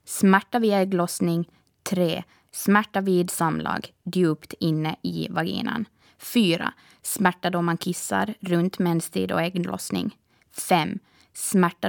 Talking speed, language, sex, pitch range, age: 110 wpm, Swedish, female, 160-205 Hz, 20-39